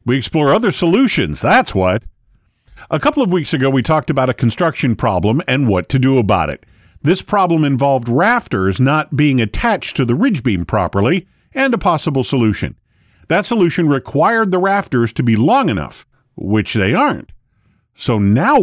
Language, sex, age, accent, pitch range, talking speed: English, male, 50-69, American, 115-175 Hz, 170 wpm